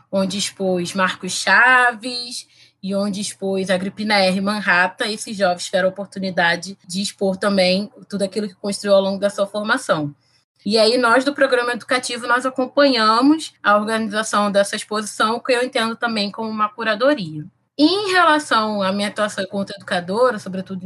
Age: 20-39